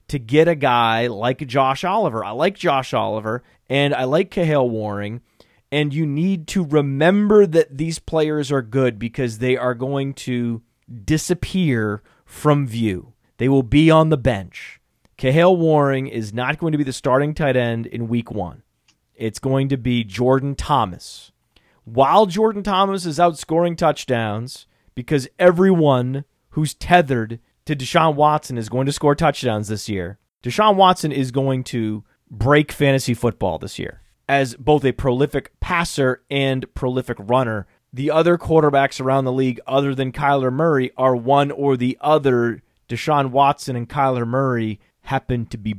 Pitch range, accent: 120-150 Hz, American